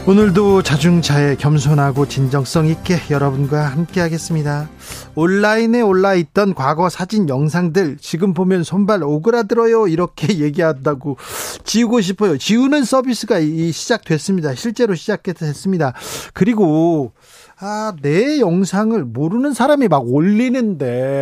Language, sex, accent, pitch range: Korean, male, native, 155-210 Hz